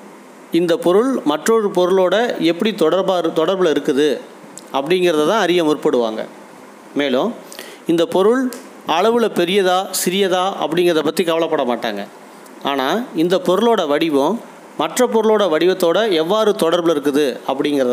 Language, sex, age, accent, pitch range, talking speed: Tamil, male, 40-59, native, 150-195 Hz, 110 wpm